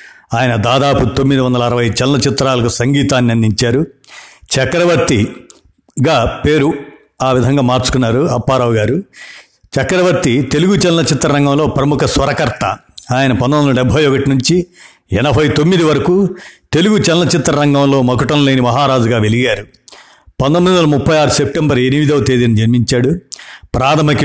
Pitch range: 125-145 Hz